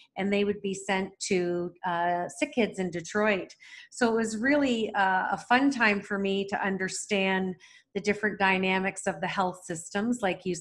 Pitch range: 185-220 Hz